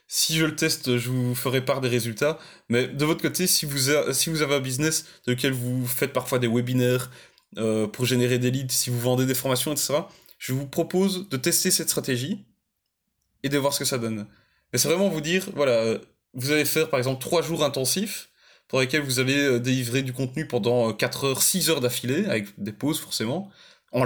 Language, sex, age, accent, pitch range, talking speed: French, male, 20-39, French, 125-150 Hz, 205 wpm